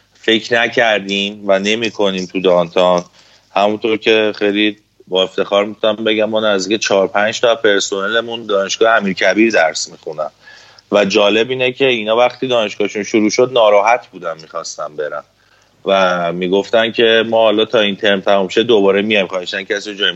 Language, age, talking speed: Persian, 30-49, 150 wpm